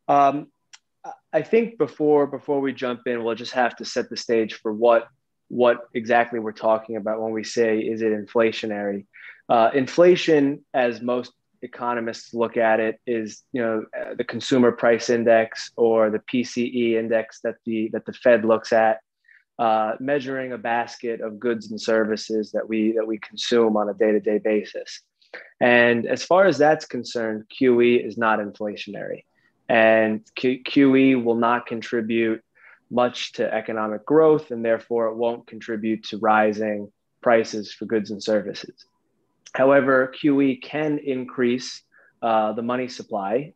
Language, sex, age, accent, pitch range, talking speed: Portuguese, male, 20-39, American, 110-125 Hz, 150 wpm